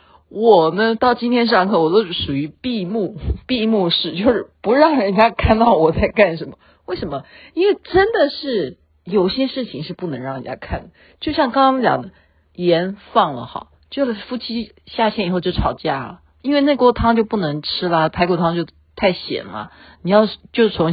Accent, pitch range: native, 145-230 Hz